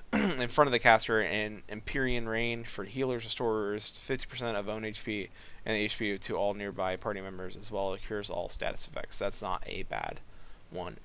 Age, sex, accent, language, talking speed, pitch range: 20-39, male, American, English, 190 wpm, 100-115 Hz